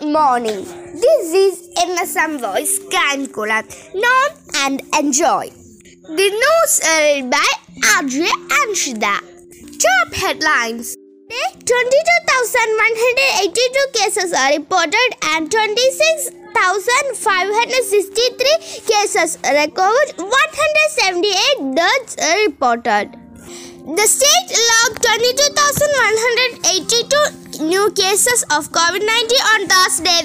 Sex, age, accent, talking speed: female, 20-39, native, 90 wpm